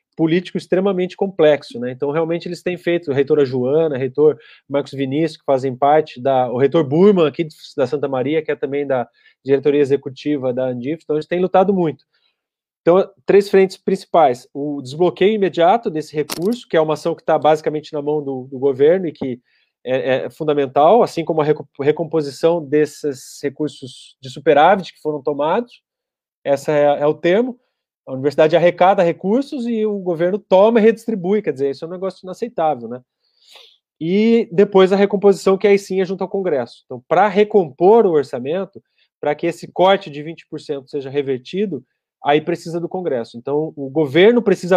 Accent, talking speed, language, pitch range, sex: Brazilian, 175 wpm, Portuguese, 145-190 Hz, male